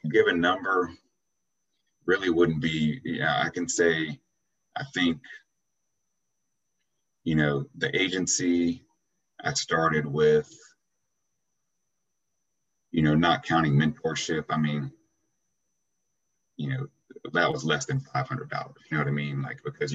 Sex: male